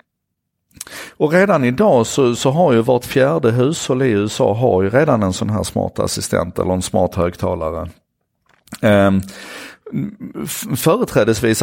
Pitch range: 100-125 Hz